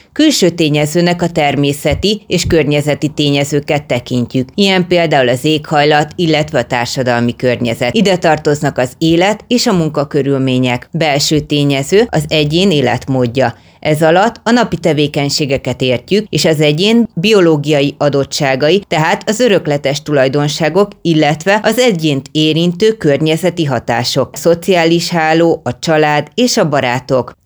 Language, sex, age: Hungarian, female, 30-49